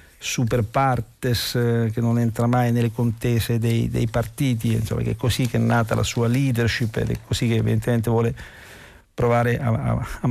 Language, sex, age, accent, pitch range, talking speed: Italian, male, 50-69, native, 115-125 Hz, 175 wpm